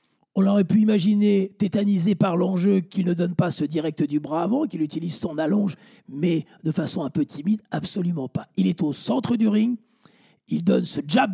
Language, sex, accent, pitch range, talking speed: French, male, French, 160-215 Hz, 200 wpm